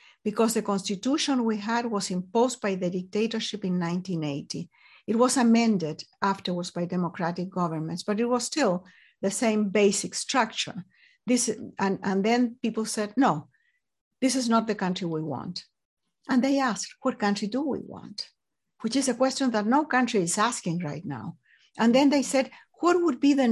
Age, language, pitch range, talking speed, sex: 60-79, English, 190-250 Hz, 175 wpm, female